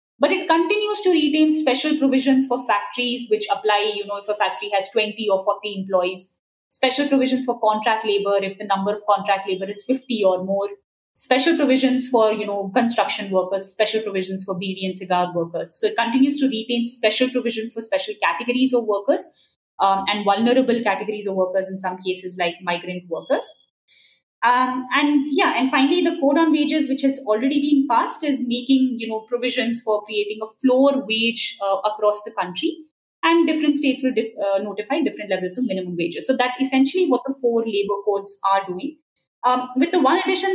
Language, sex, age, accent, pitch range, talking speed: English, female, 20-39, Indian, 205-275 Hz, 190 wpm